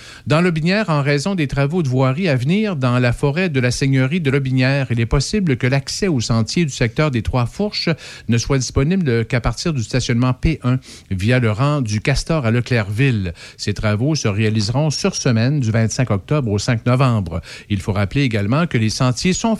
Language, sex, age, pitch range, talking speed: French, male, 50-69, 115-150 Hz, 195 wpm